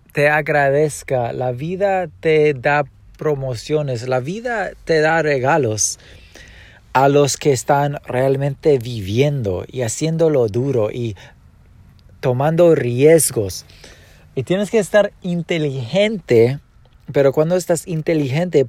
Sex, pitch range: male, 120-155 Hz